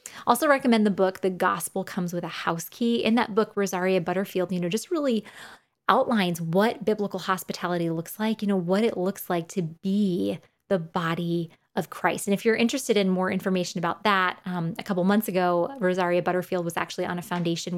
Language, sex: English, female